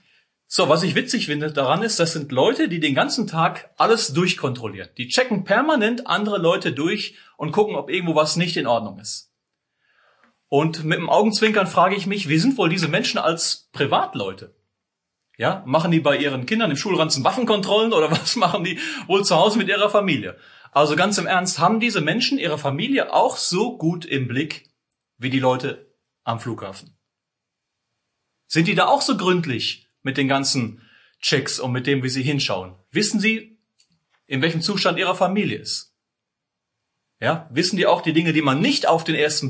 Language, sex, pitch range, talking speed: German, male, 135-195 Hz, 180 wpm